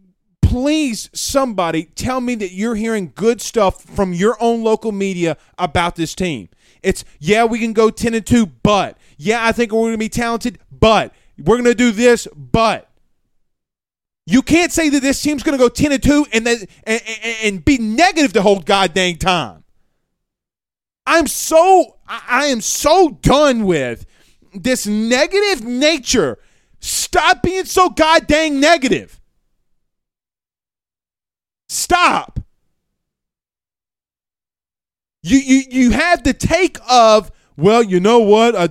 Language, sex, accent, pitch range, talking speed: English, male, American, 210-315 Hz, 145 wpm